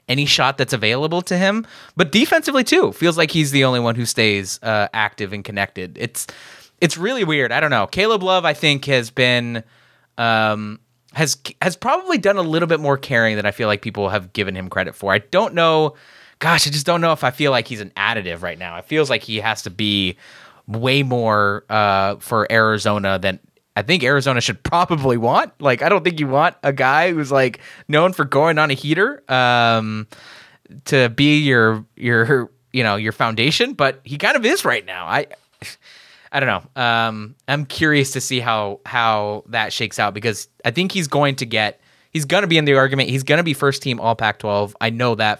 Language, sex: English, male